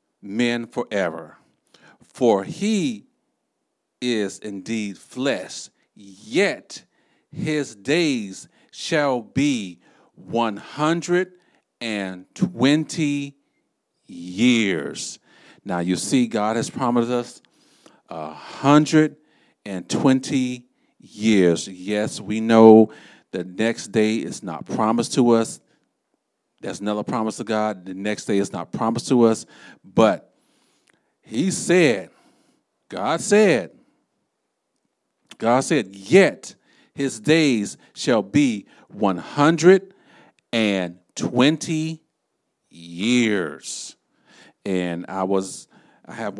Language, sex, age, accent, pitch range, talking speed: English, male, 50-69, American, 100-145 Hz, 90 wpm